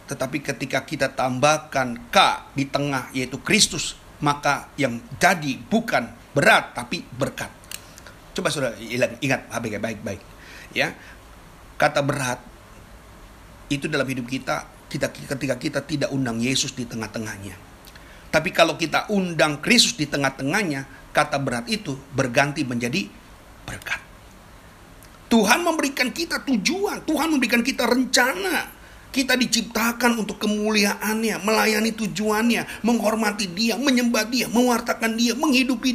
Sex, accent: male, native